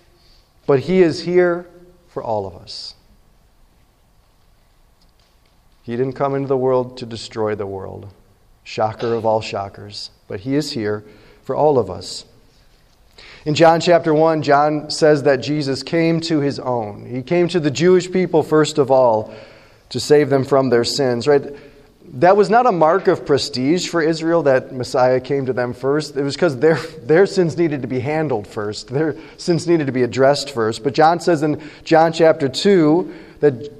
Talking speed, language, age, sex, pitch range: 175 wpm, English, 40-59, male, 130-175 Hz